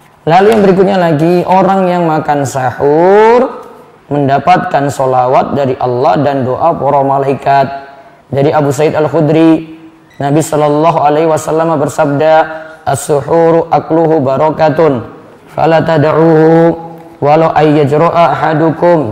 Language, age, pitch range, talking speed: Indonesian, 20-39, 135-165 Hz, 105 wpm